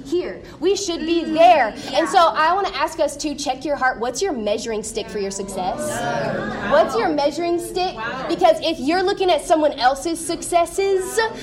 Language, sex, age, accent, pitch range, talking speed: English, female, 20-39, American, 245-320 Hz, 185 wpm